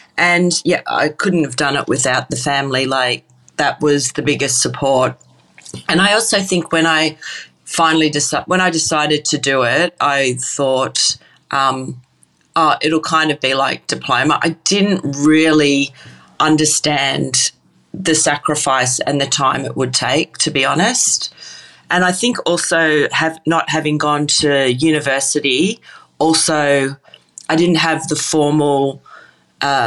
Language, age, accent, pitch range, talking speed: English, 40-59, Australian, 135-165 Hz, 145 wpm